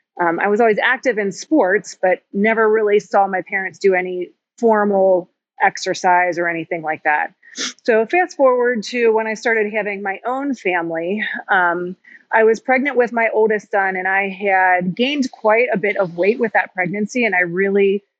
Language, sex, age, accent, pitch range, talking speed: English, female, 30-49, American, 180-225 Hz, 180 wpm